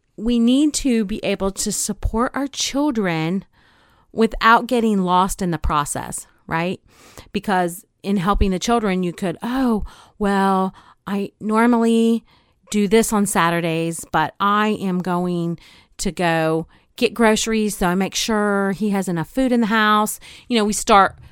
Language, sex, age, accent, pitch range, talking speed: English, female, 40-59, American, 175-220 Hz, 150 wpm